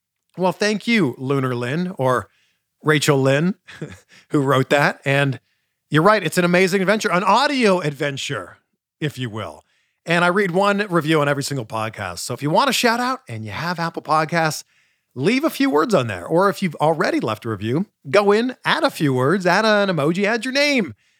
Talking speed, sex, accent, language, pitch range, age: 195 wpm, male, American, English, 130-205 Hz, 40-59